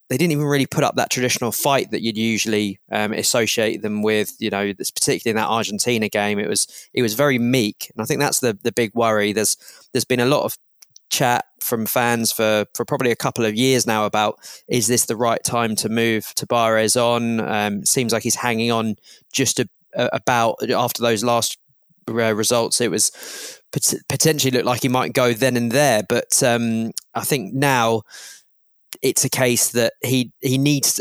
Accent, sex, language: British, male, English